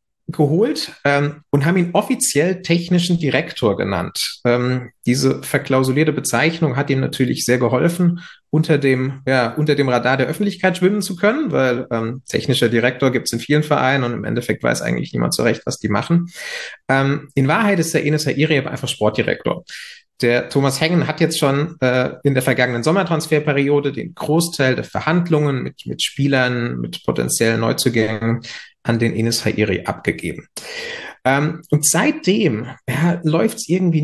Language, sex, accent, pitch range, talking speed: German, male, German, 130-160 Hz, 160 wpm